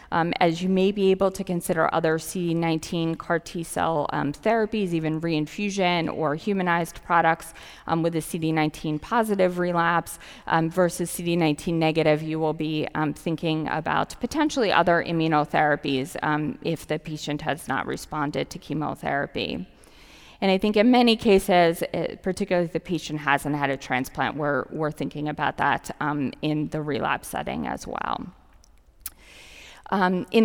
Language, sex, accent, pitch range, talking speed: English, female, American, 155-180 Hz, 150 wpm